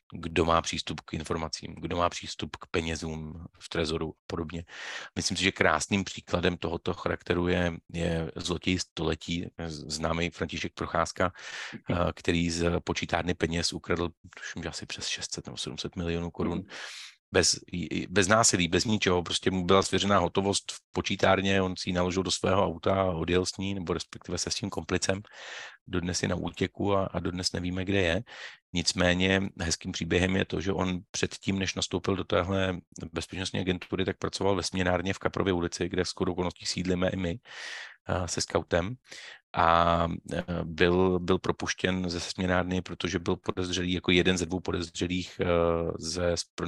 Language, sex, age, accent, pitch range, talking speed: Czech, male, 40-59, native, 85-95 Hz, 160 wpm